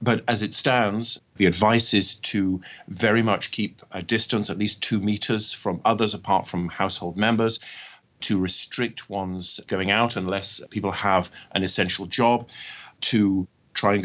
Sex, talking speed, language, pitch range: male, 160 wpm, English, 95-115 Hz